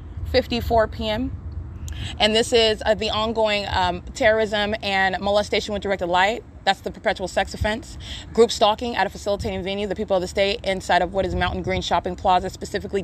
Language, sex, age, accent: English, female, 20-39, American